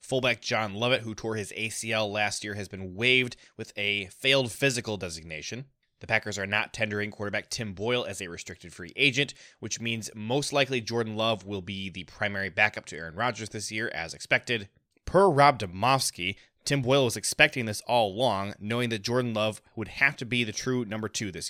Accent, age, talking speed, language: American, 20-39, 200 wpm, English